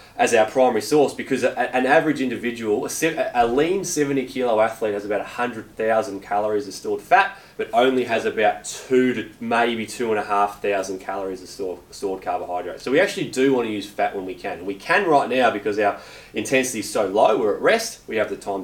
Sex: male